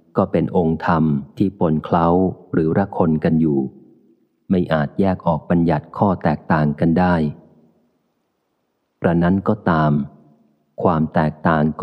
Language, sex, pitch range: Thai, male, 80-90 Hz